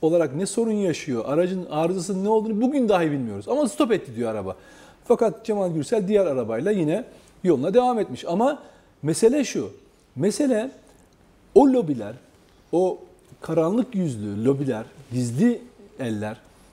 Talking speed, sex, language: 135 wpm, male, Turkish